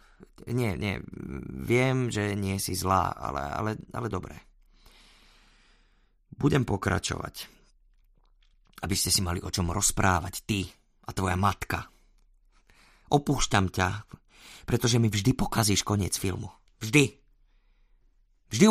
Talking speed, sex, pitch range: 110 wpm, male, 110-140 Hz